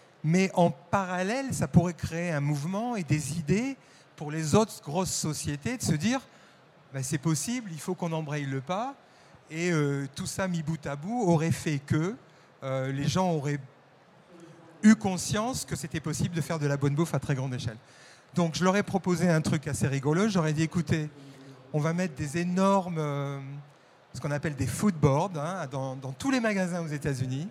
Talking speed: 205 wpm